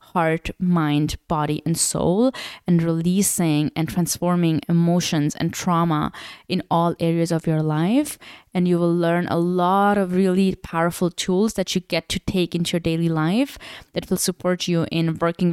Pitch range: 160-180 Hz